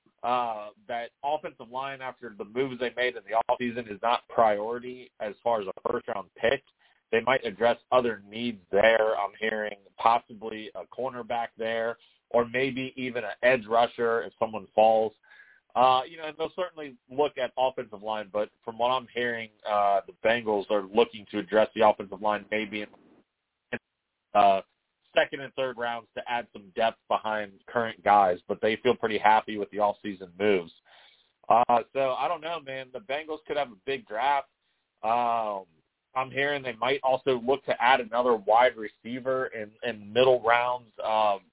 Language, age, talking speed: English, 30-49, 175 wpm